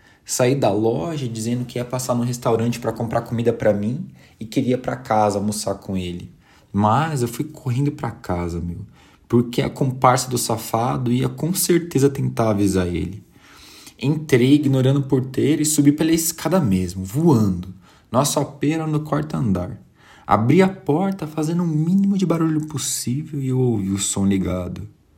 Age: 20-39